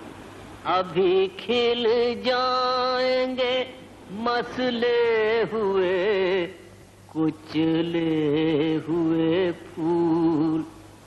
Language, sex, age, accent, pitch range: English, female, 50-69, Indian, 145-230 Hz